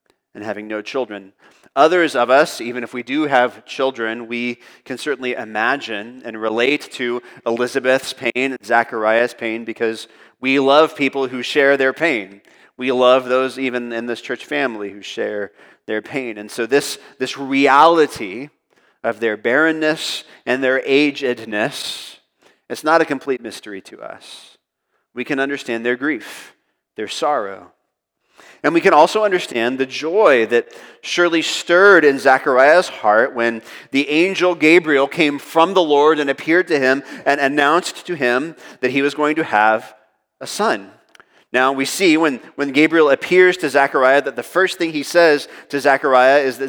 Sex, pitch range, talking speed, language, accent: male, 120-150 Hz, 160 wpm, English, American